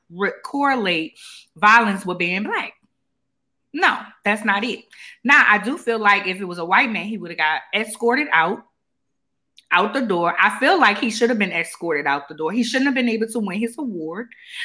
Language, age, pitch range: English, 20-39, 190-260 Hz